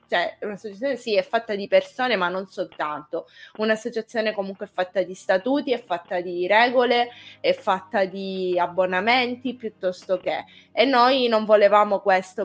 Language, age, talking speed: Italian, 20-39, 145 wpm